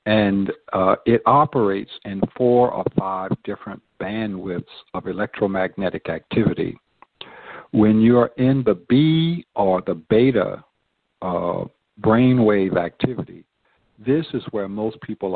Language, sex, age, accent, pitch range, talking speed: English, male, 60-79, American, 95-125 Hz, 115 wpm